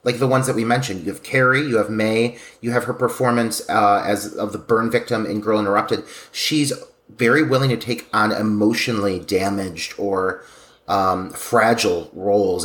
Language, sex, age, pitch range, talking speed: English, male, 30-49, 100-130 Hz, 175 wpm